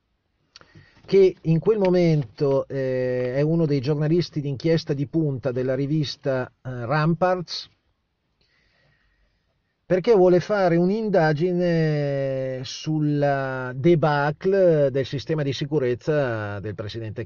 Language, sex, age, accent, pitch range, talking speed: Italian, male, 40-59, native, 125-165 Hz, 95 wpm